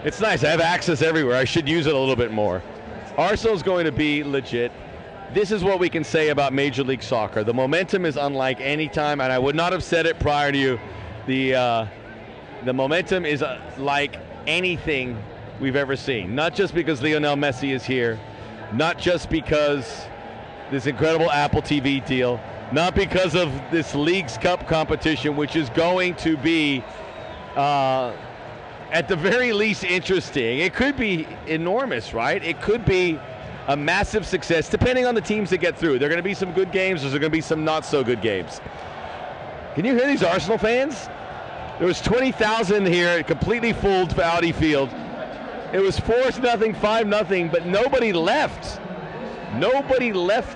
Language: English